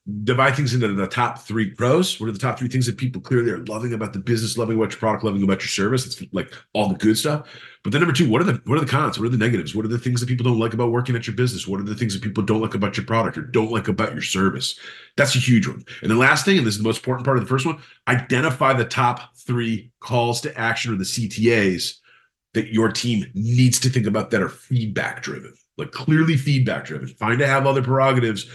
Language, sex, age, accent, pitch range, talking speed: English, male, 40-59, American, 100-120 Hz, 265 wpm